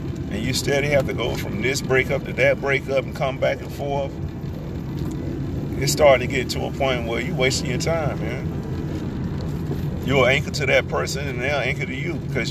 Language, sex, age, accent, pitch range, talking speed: English, male, 40-59, American, 115-155 Hz, 205 wpm